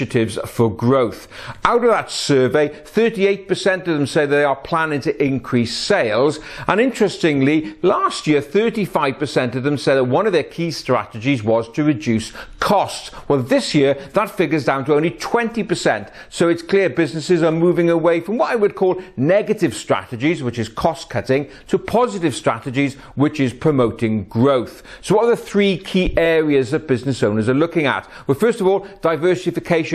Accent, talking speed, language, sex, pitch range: British, 175 wpm, English, male, 135-180 Hz